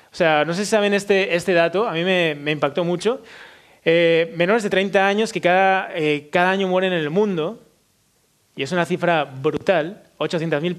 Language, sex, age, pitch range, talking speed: Spanish, male, 20-39, 165-205 Hz, 195 wpm